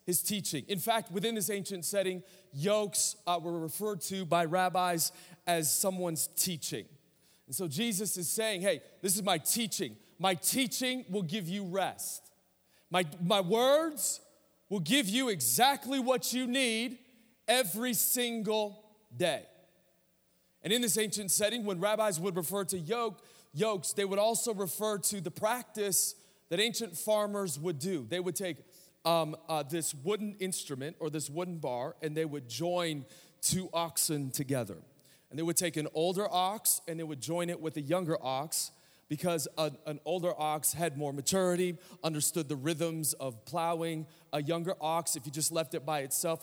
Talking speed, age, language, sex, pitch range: 165 wpm, 30-49, English, male, 160-210 Hz